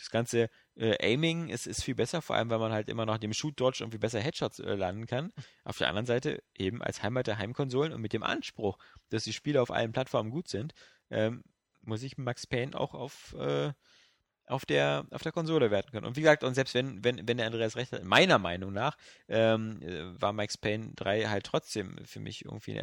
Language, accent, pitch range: German, German, 110-145 Hz